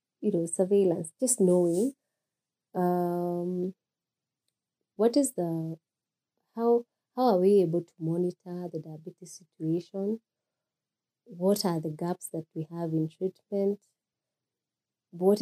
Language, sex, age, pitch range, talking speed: English, female, 20-39, 170-220 Hz, 115 wpm